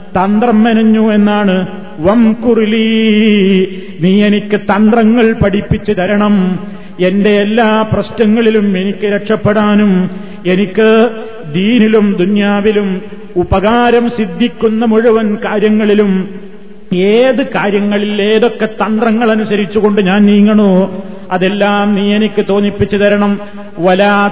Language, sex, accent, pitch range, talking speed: Malayalam, male, native, 200-220 Hz, 85 wpm